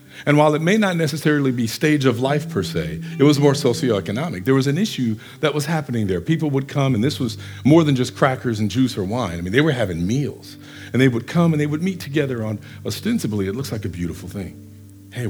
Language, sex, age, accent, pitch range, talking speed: English, male, 50-69, American, 115-155 Hz, 245 wpm